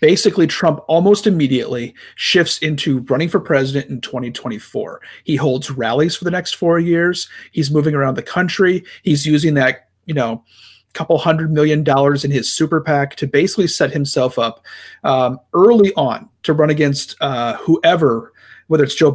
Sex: male